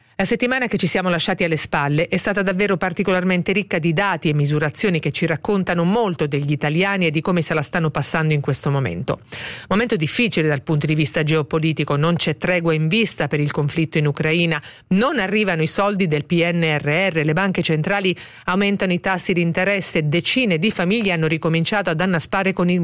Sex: female